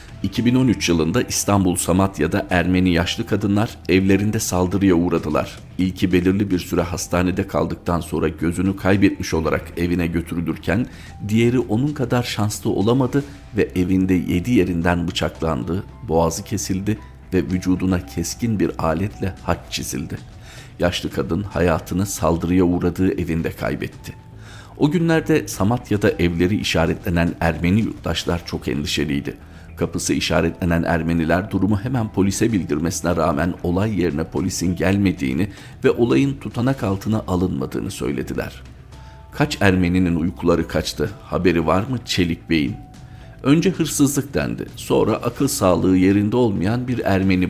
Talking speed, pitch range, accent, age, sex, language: 120 wpm, 85-105 Hz, native, 50-69, male, Turkish